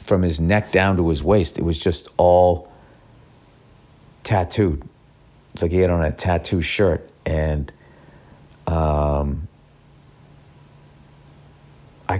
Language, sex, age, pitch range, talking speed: English, male, 40-59, 95-115 Hz, 115 wpm